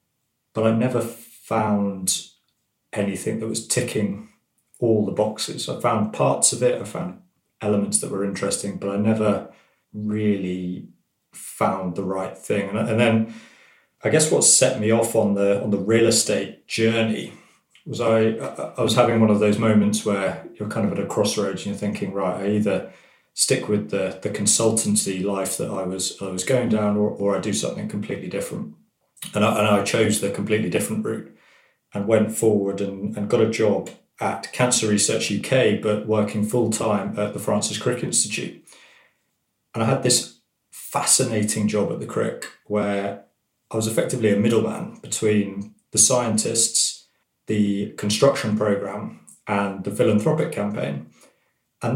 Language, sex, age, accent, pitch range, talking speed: English, male, 30-49, British, 100-110 Hz, 165 wpm